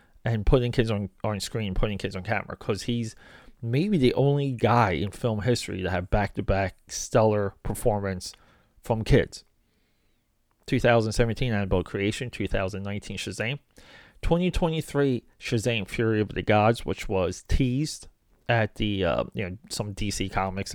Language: English